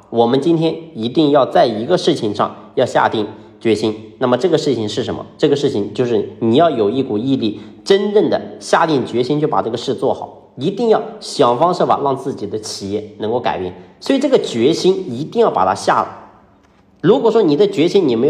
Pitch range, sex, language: 115-175 Hz, male, Chinese